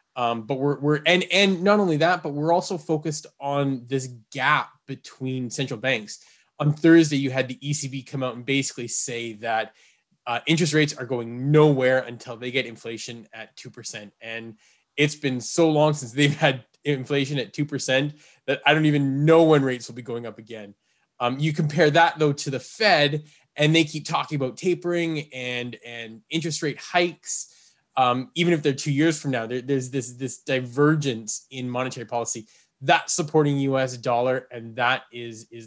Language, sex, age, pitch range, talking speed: English, male, 20-39, 125-150 Hz, 185 wpm